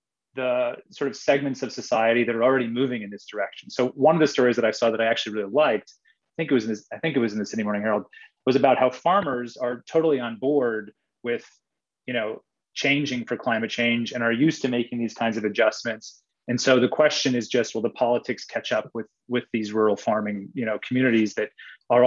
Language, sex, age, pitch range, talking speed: English, male, 30-49, 115-140 Hz, 235 wpm